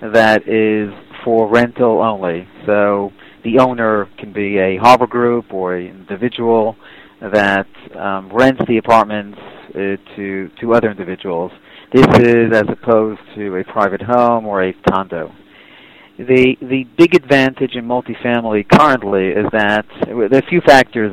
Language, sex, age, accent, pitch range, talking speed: English, male, 40-59, American, 105-125 Hz, 145 wpm